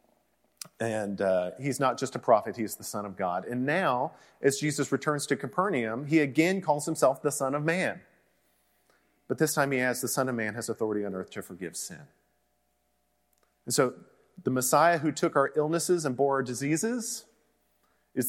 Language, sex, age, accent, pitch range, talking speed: English, male, 40-59, American, 115-160 Hz, 185 wpm